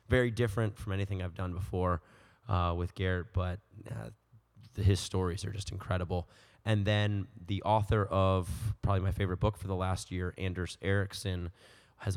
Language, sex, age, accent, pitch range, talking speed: English, male, 20-39, American, 95-110 Hz, 170 wpm